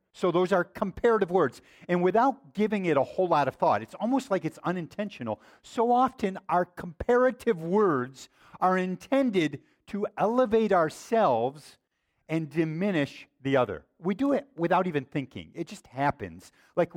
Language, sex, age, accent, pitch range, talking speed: English, male, 50-69, American, 150-210 Hz, 150 wpm